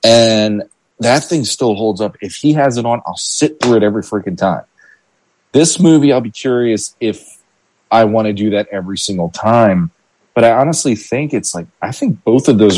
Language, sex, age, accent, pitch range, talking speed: English, male, 30-49, American, 95-115 Hz, 200 wpm